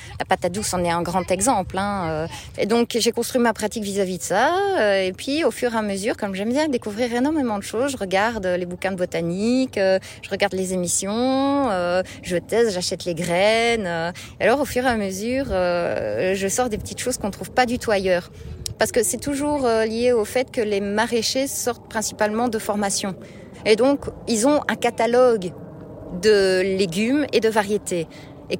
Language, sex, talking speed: French, female, 195 wpm